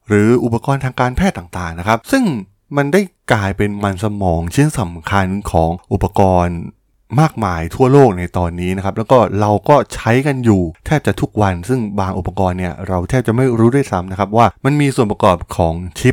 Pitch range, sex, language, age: 95-125 Hz, male, Thai, 20-39